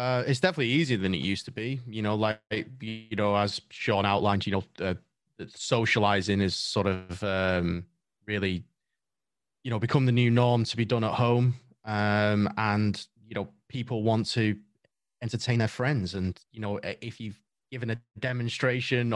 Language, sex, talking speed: English, male, 170 wpm